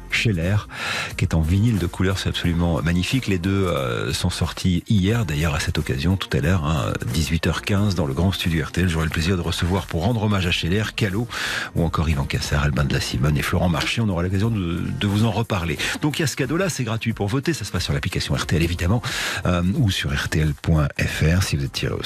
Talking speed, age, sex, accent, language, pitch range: 235 wpm, 40-59, male, French, French, 85-120 Hz